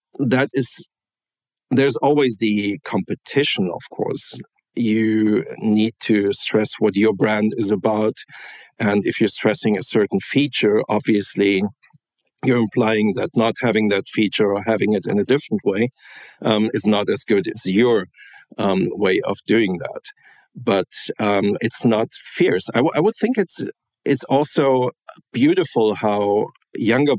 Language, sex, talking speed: English, male, 150 wpm